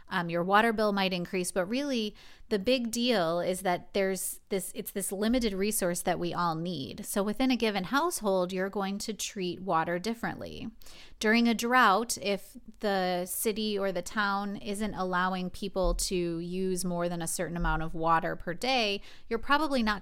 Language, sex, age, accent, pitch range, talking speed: English, female, 30-49, American, 175-215 Hz, 180 wpm